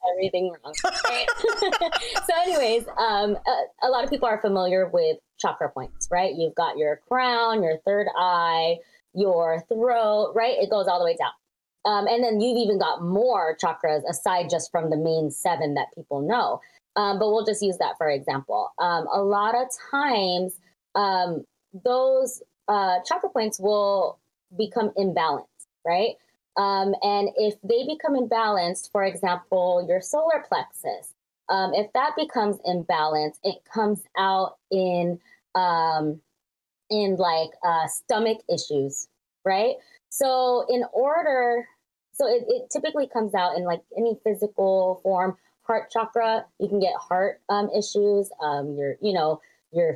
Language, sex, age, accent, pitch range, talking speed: English, female, 20-39, American, 180-230 Hz, 150 wpm